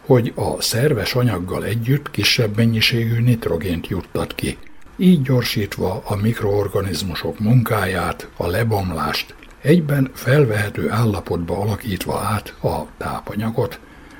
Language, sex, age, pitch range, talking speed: Hungarian, male, 60-79, 100-125 Hz, 100 wpm